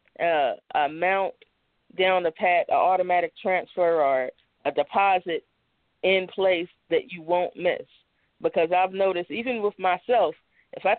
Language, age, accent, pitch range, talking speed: English, 20-39, American, 170-200 Hz, 135 wpm